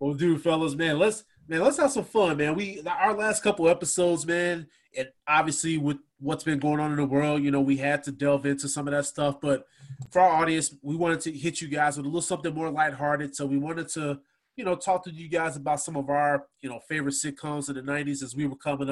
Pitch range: 135-160 Hz